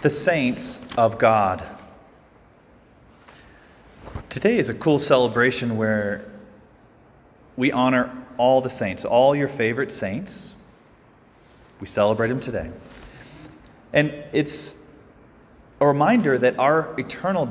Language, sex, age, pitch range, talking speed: English, male, 30-49, 105-140 Hz, 105 wpm